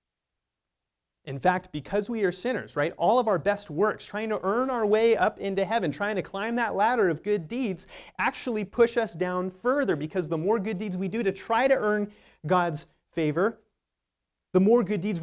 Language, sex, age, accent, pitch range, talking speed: English, male, 30-49, American, 120-200 Hz, 195 wpm